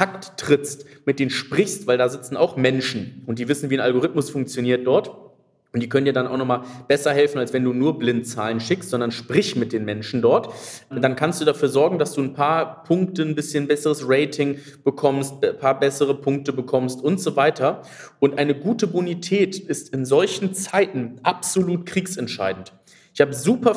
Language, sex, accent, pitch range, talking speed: German, male, German, 130-160 Hz, 190 wpm